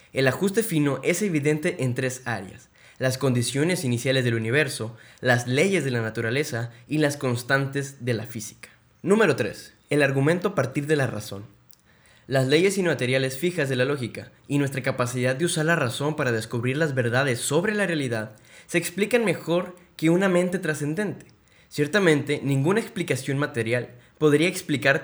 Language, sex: Spanish, male